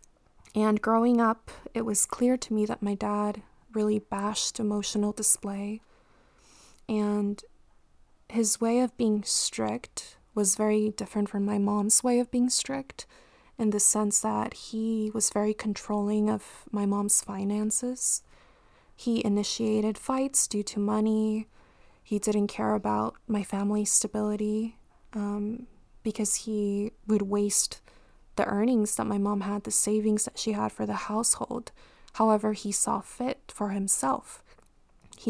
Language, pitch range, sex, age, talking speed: English, 205-220 Hz, female, 20-39, 140 wpm